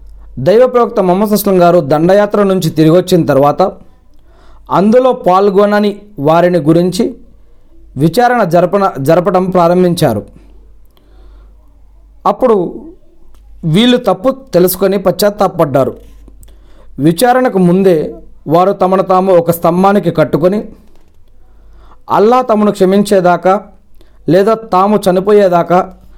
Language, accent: Telugu, native